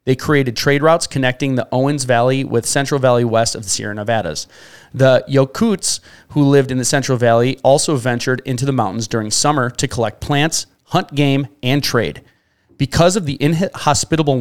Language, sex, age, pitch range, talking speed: English, male, 30-49, 120-145 Hz, 175 wpm